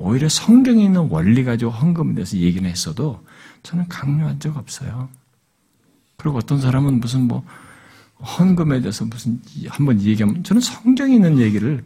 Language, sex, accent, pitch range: Korean, male, native, 130-185 Hz